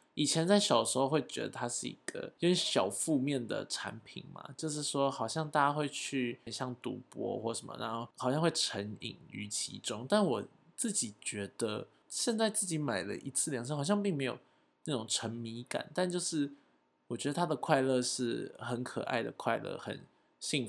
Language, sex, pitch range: Chinese, male, 115-155 Hz